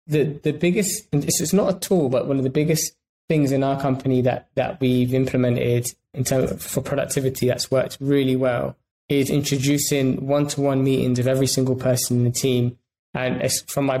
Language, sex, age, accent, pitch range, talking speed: English, male, 20-39, British, 130-145 Hz, 195 wpm